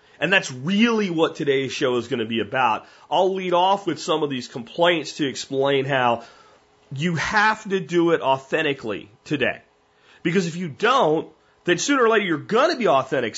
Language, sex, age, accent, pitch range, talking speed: English, male, 30-49, American, 130-185 Hz, 190 wpm